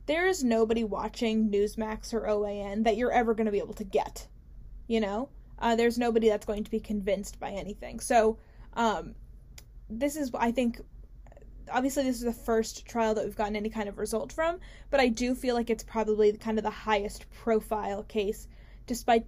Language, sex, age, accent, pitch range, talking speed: English, female, 10-29, American, 210-235 Hz, 195 wpm